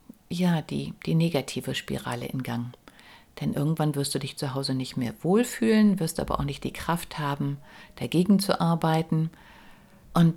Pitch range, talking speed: 155-190 Hz, 160 wpm